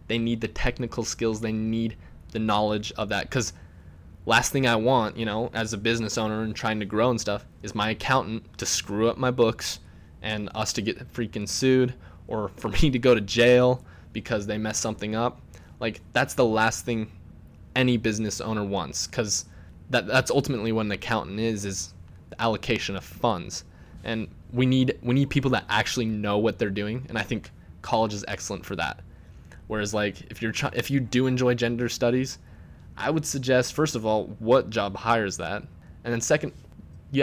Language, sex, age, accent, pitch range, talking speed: English, male, 20-39, American, 100-125 Hz, 195 wpm